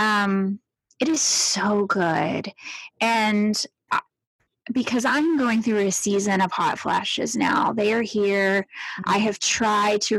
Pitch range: 195-220 Hz